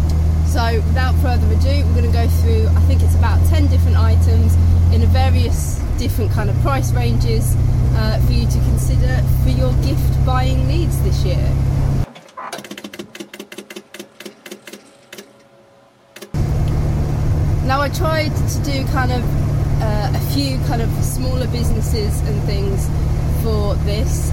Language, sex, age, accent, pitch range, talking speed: English, female, 20-39, British, 80-90 Hz, 130 wpm